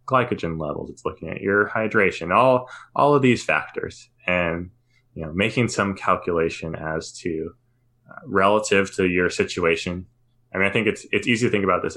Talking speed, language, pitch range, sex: 180 wpm, English, 90-120 Hz, male